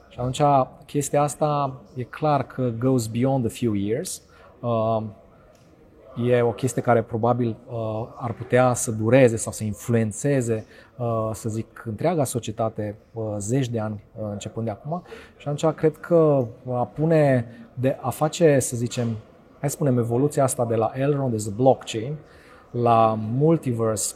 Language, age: Romanian, 30-49